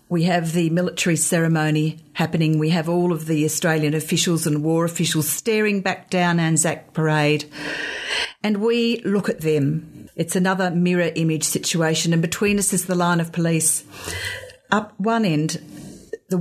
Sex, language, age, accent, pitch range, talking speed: female, English, 50-69, Australian, 155-180 Hz, 155 wpm